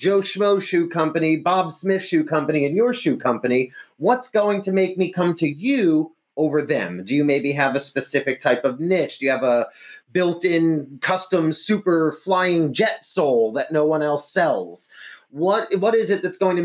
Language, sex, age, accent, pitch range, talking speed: English, male, 30-49, American, 145-200 Hz, 195 wpm